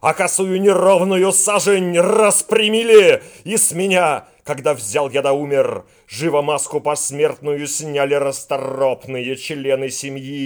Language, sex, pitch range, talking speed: Russian, male, 110-155 Hz, 120 wpm